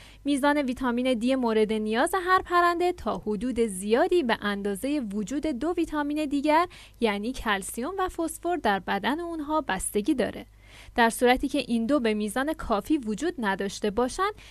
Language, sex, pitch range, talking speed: Persian, female, 215-300 Hz, 150 wpm